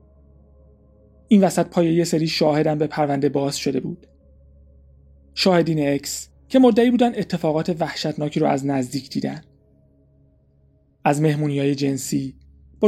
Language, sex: Persian, male